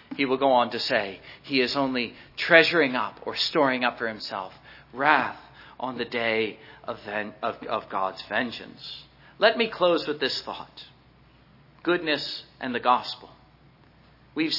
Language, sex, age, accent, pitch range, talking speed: English, male, 50-69, American, 165-225 Hz, 145 wpm